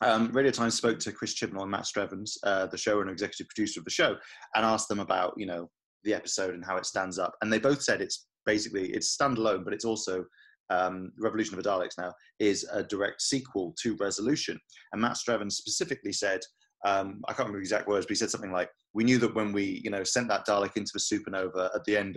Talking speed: 240 wpm